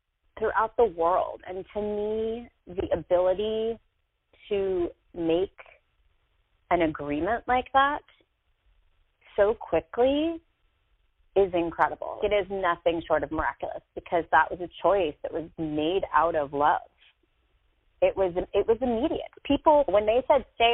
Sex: female